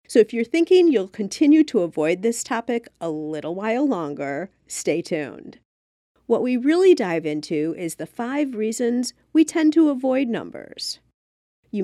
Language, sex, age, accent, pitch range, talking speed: English, female, 40-59, American, 175-275 Hz, 155 wpm